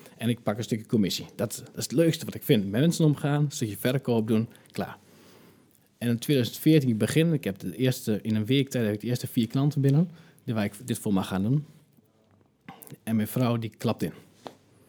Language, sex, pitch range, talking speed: Dutch, male, 105-130 Hz, 220 wpm